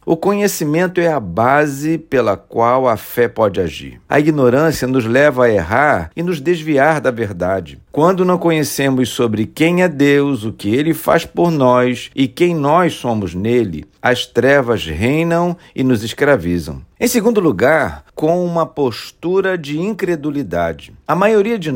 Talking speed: 155 wpm